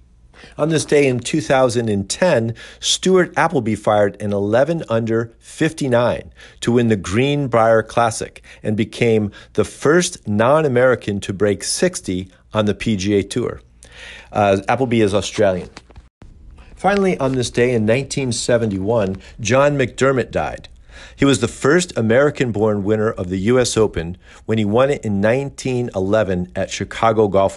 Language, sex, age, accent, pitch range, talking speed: English, male, 50-69, American, 100-125 Hz, 135 wpm